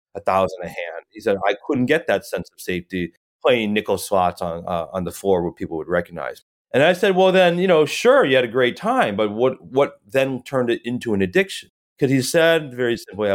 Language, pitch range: English, 95-125 Hz